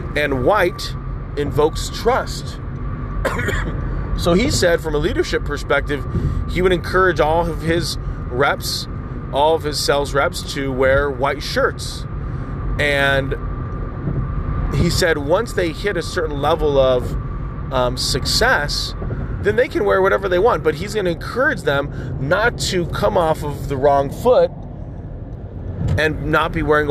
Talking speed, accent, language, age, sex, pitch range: 145 wpm, American, English, 30-49, male, 130-165 Hz